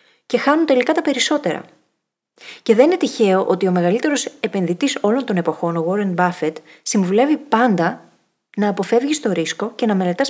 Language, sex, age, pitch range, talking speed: Greek, female, 30-49, 195-265 Hz, 165 wpm